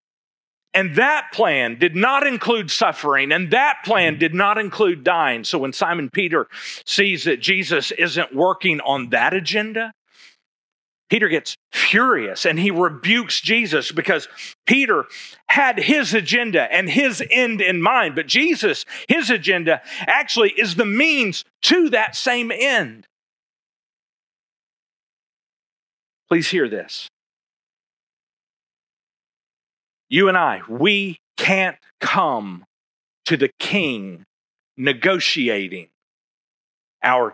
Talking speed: 110 wpm